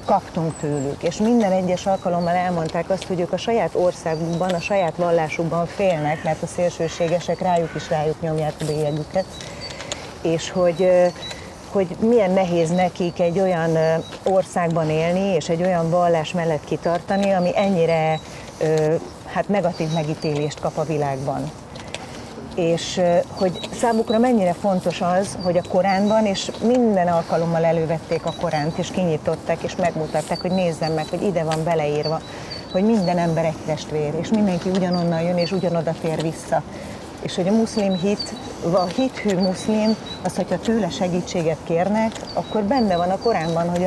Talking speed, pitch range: 150 wpm, 165-190 Hz